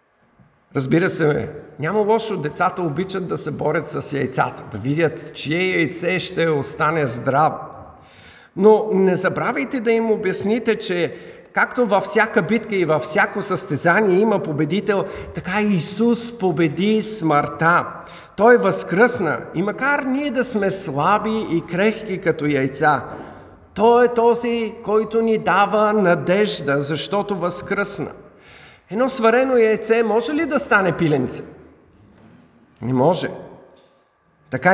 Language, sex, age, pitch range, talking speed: Bulgarian, male, 50-69, 160-215 Hz, 125 wpm